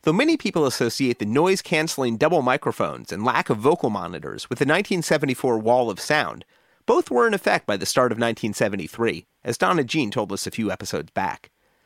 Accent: American